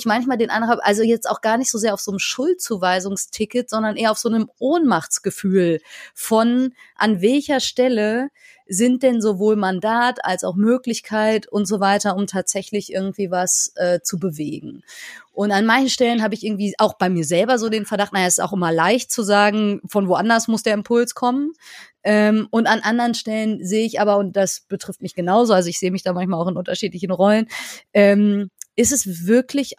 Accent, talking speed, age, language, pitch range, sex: German, 195 wpm, 30-49, German, 190-230 Hz, female